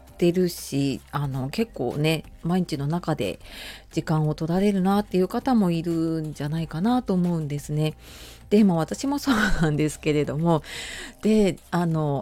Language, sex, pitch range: Japanese, female, 150-200 Hz